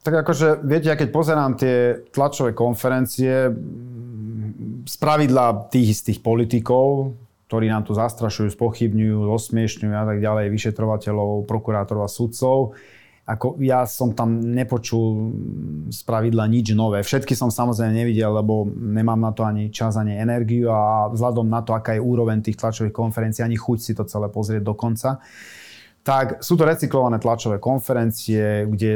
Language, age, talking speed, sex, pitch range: Slovak, 30-49, 145 wpm, male, 110-130 Hz